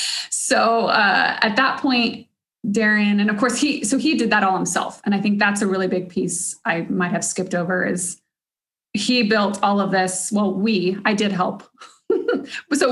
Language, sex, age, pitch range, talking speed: English, female, 20-39, 195-245 Hz, 190 wpm